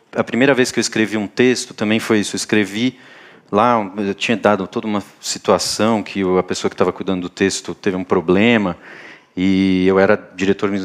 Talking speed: 195 wpm